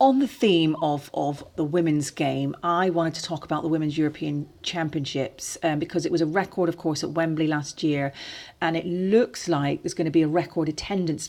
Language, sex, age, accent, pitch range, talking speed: English, female, 40-59, British, 150-185 Hz, 215 wpm